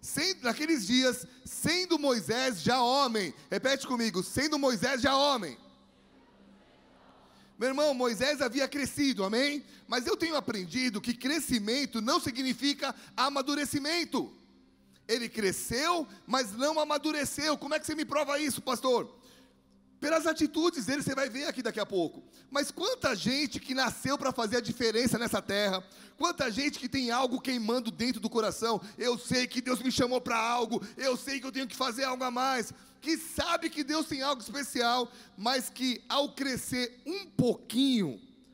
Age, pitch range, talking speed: 40-59, 230-285 Hz, 155 wpm